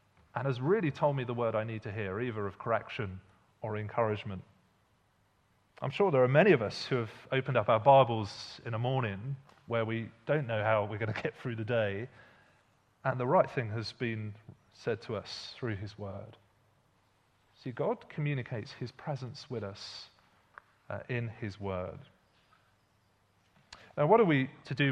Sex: male